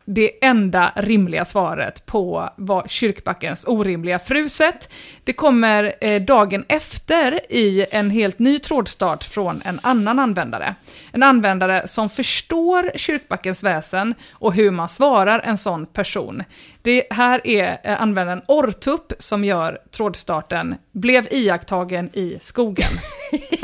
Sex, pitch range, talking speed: female, 195-255 Hz, 120 wpm